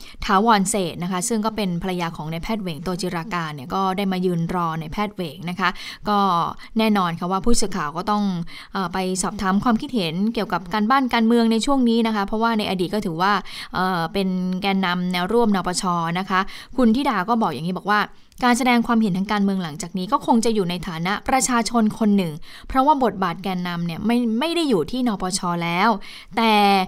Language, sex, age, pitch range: Thai, female, 20-39, 180-230 Hz